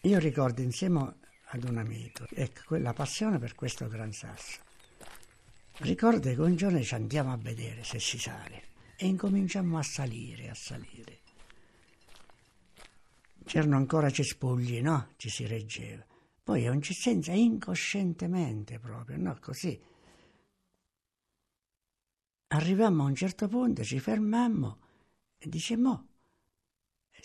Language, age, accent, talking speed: Italian, 60-79, native, 125 wpm